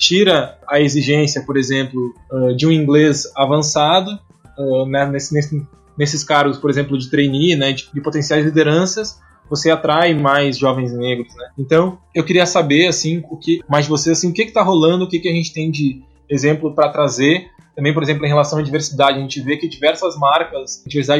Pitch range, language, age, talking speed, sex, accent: 140-170 Hz, Portuguese, 20-39, 200 wpm, male, Brazilian